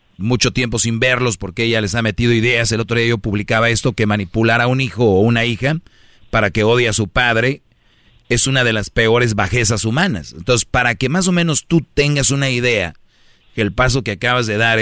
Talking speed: 220 wpm